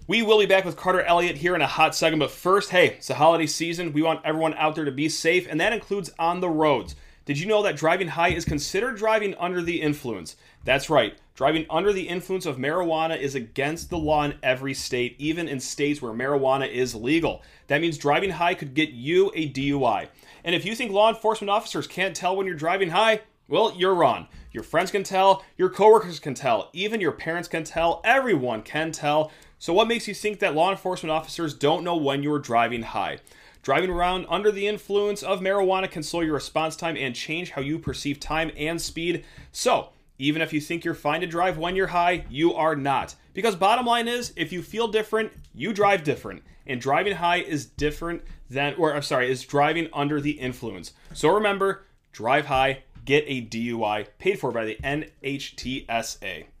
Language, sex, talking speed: English, male, 205 wpm